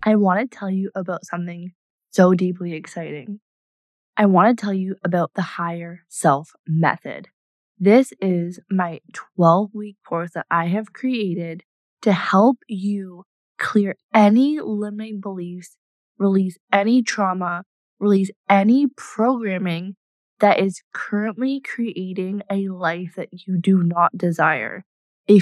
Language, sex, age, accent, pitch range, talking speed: English, female, 20-39, American, 180-215 Hz, 125 wpm